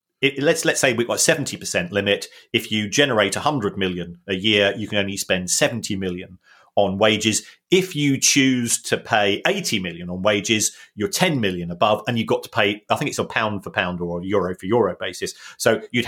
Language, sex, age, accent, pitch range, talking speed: English, male, 30-49, British, 100-130 Hz, 210 wpm